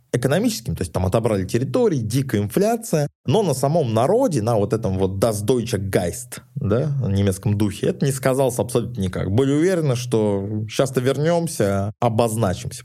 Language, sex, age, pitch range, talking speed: Russian, male, 20-39, 100-130 Hz, 160 wpm